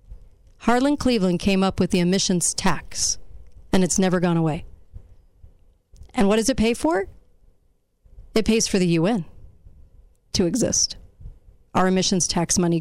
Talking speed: 140 wpm